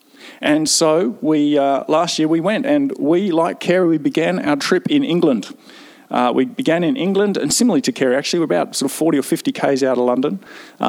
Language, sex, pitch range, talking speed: English, male, 150-250 Hz, 225 wpm